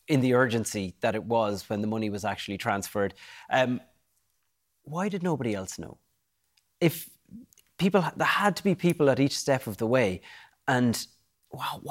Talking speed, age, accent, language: 165 wpm, 30-49, Irish, English